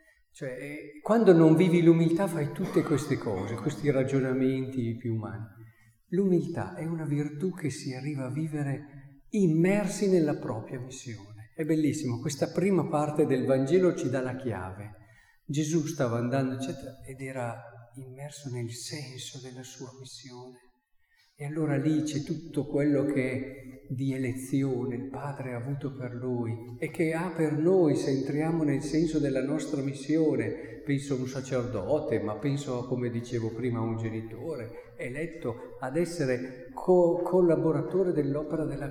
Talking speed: 150 wpm